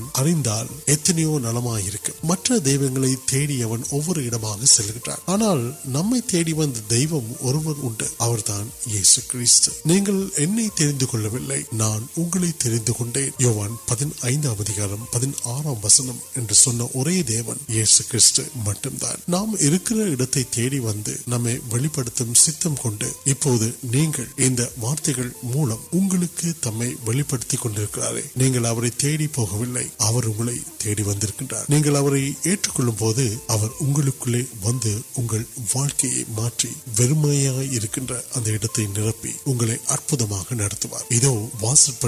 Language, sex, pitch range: Urdu, male, 115-140 Hz